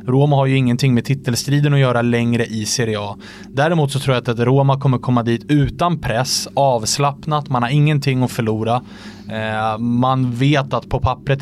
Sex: male